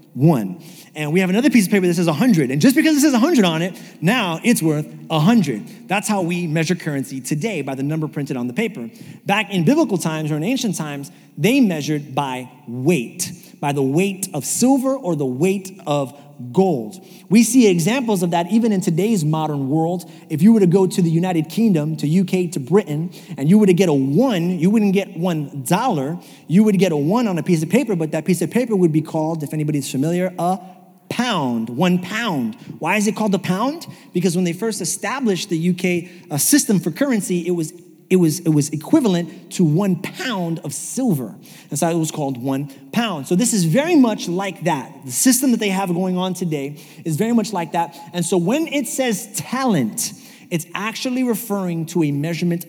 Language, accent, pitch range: English, American, 155-205 Hz